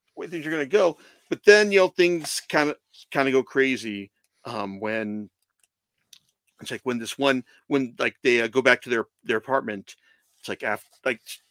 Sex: male